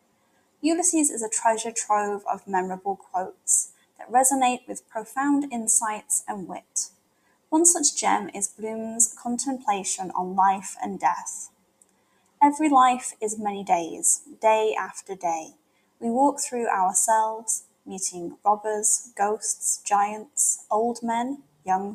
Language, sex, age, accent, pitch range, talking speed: English, female, 10-29, British, 205-275 Hz, 120 wpm